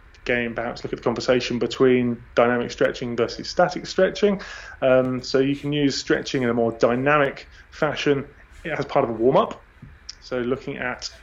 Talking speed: 165 wpm